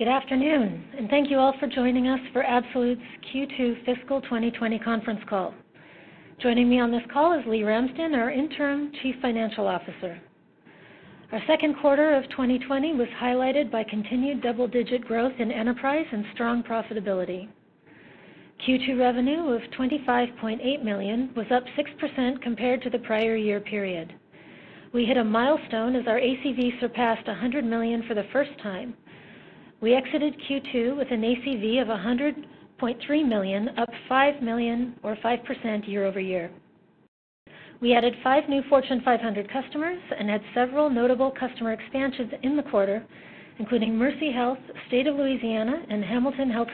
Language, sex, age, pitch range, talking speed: English, female, 40-59, 225-270 Hz, 150 wpm